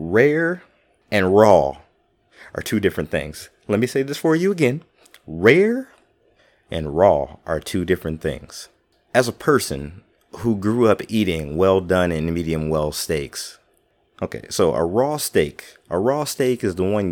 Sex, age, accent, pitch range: male, 30-49, American, 85-125 Hz